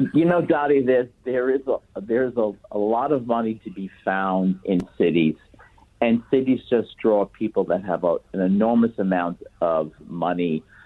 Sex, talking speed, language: male, 170 wpm, English